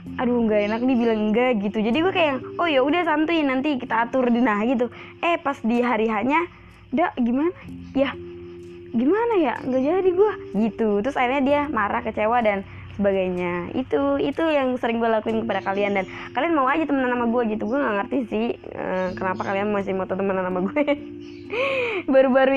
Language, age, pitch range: Indonesian, 20-39, 195-265 Hz